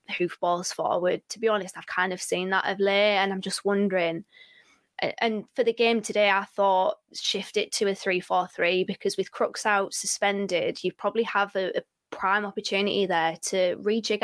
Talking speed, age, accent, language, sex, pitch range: 190 wpm, 20-39, British, English, female, 185-210 Hz